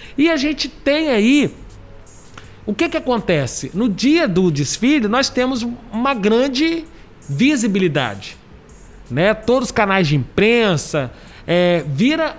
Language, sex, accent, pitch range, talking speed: Portuguese, male, Brazilian, 175-250 Hz, 125 wpm